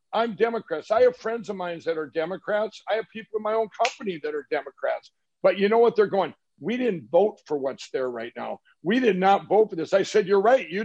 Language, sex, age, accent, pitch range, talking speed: English, male, 60-79, American, 185-230 Hz, 250 wpm